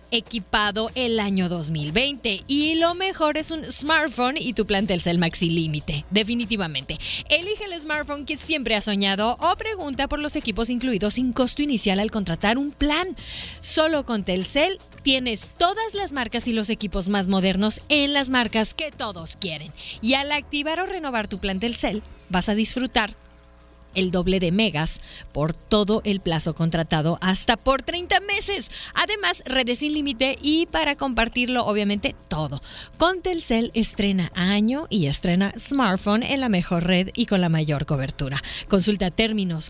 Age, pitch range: 30-49, 175-275 Hz